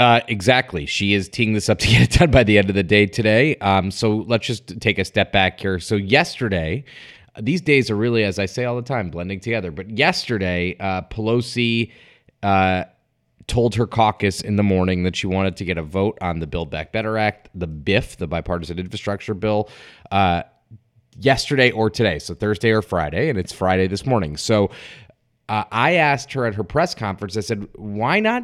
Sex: male